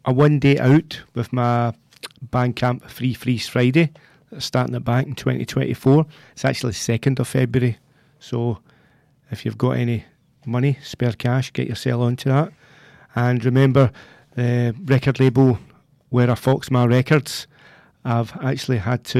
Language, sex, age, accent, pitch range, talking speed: English, male, 40-59, British, 120-145 Hz, 155 wpm